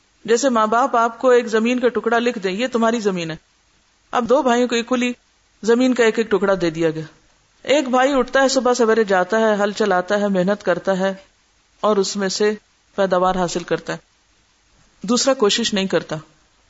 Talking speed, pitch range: 195 wpm, 200-255 Hz